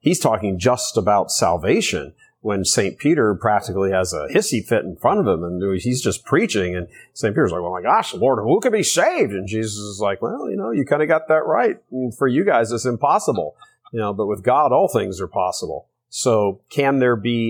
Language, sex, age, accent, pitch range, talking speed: English, male, 40-59, American, 100-120 Hz, 220 wpm